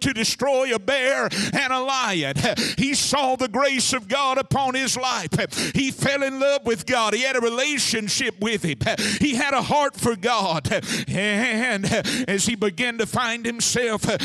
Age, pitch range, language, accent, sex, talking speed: 60-79, 220-255 Hz, English, American, male, 175 wpm